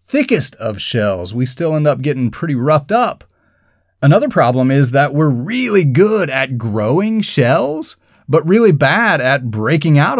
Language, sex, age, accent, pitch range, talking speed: English, male, 30-49, American, 125-165 Hz, 160 wpm